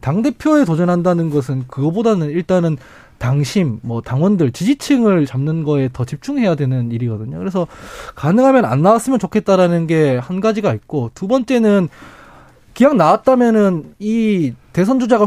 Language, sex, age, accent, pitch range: Korean, male, 20-39, native, 150-220 Hz